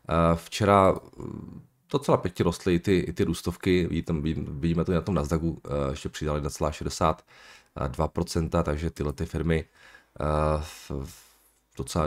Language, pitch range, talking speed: Czech, 80-95 Hz, 130 wpm